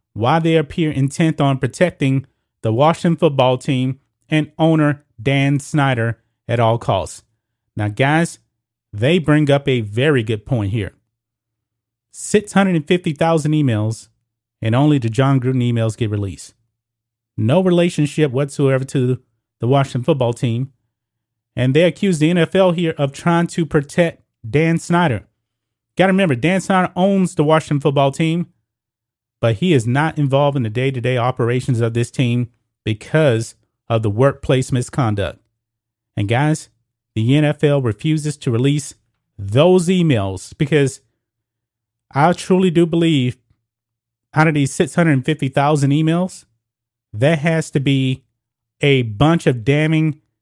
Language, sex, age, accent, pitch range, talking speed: English, male, 30-49, American, 115-155 Hz, 130 wpm